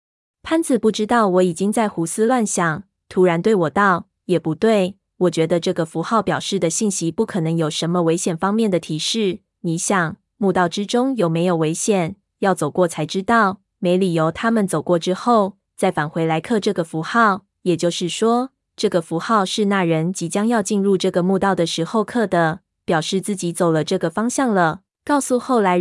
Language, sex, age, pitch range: Chinese, female, 20-39, 175-215 Hz